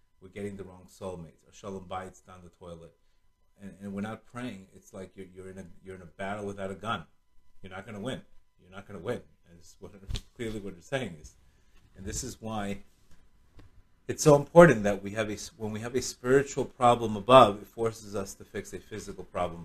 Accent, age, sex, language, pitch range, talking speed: American, 30-49, male, English, 95-115 Hz, 215 wpm